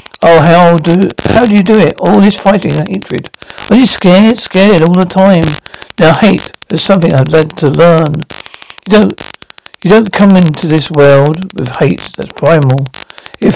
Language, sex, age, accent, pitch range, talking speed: English, male, 60-79, British, 155-195 Hz, 190 wpm